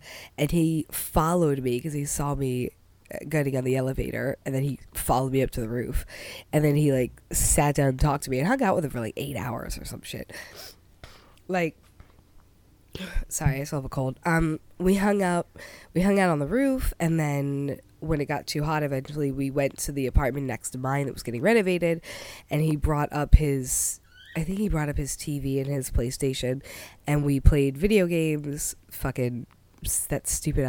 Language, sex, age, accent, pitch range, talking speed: English, female, 20-39, American, 130-165 Hz, 200 wpm